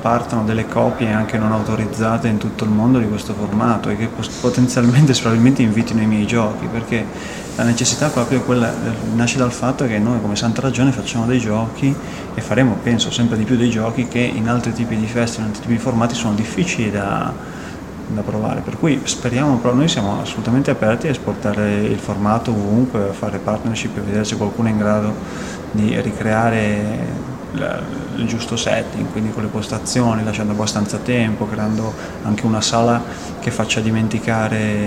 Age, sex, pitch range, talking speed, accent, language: 20-39, male, 105-120 Hz, 175 wpm, native, Italian